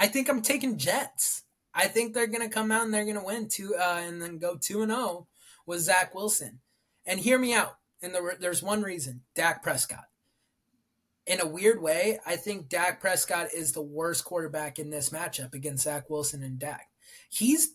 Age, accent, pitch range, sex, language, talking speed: 20-39, American, 155-210 Hz, male, English, 200 wpm